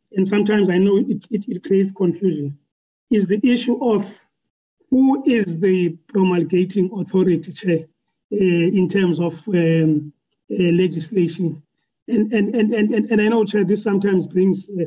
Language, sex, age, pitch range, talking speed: English, male, 40-59, 175-210 Hz, 155 wpm